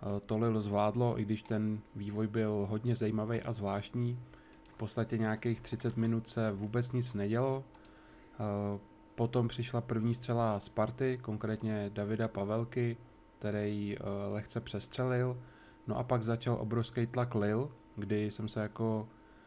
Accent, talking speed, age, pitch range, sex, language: native, 135 wpm, 20-39, 105-120 Hz, male, Czech